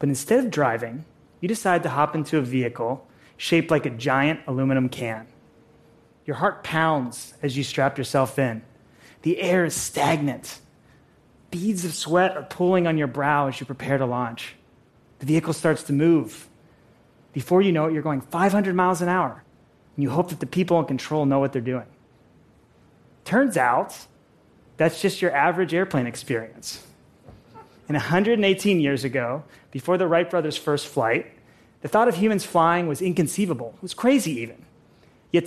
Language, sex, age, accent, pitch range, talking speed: English, male, 30-49, American, 135-180 Hz, 165 wpm